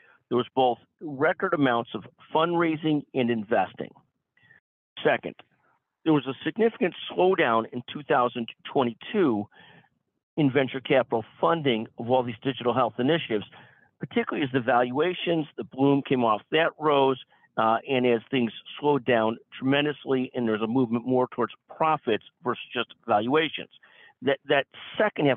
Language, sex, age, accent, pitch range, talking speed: English, male, 50-69, American, 115-140 Hz, 135 wpm